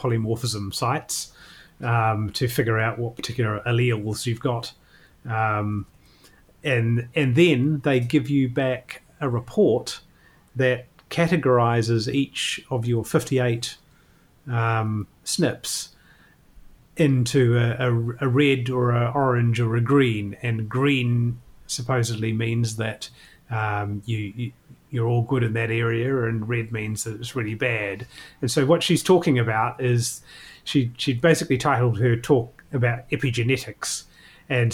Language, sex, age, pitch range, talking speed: English, male, 30-49, 115-130 Hz, 135 wpm